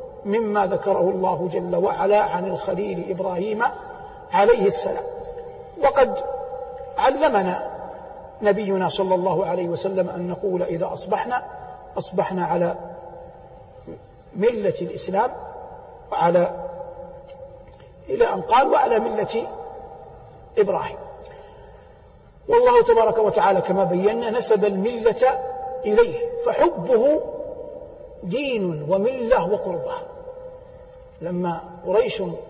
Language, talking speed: Arabic, 85 wpm